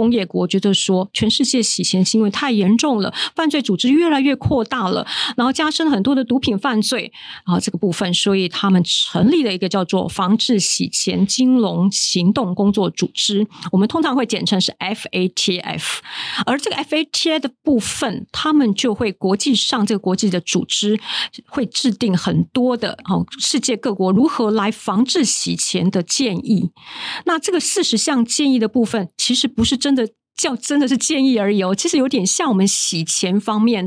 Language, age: Chinese, 50-69